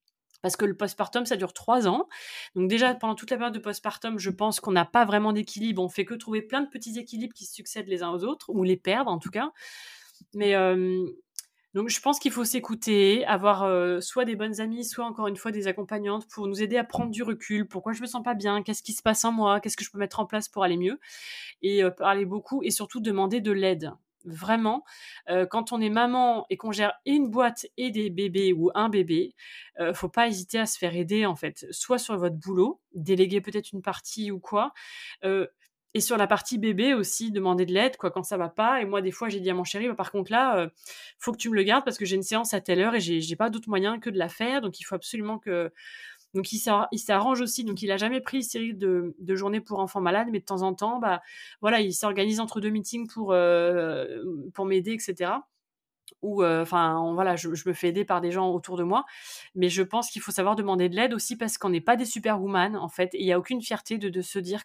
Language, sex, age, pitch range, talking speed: French, female, 20-39, 190-230 Hz, 255 wpm